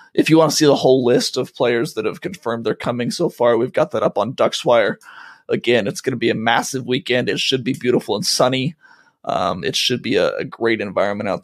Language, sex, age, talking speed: English, male, 20-39, 240 wpm